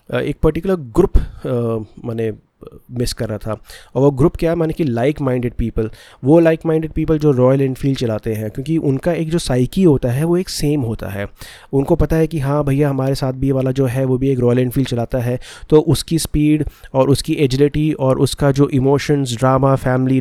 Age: 30-49